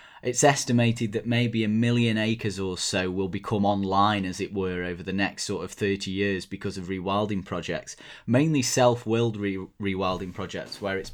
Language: English